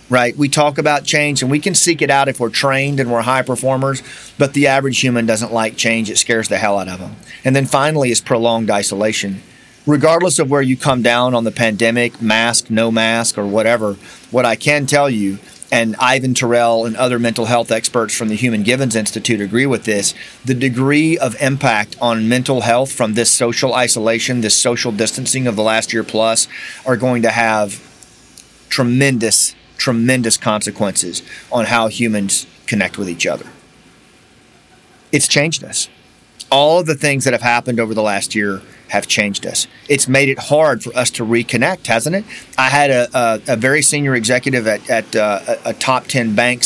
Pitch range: 115-135 Hz